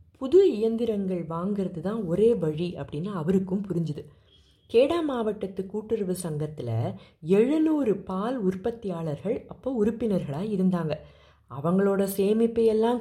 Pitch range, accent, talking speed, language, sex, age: 175-235 Hz, native, 90 wpm, Tamil, female, 30-49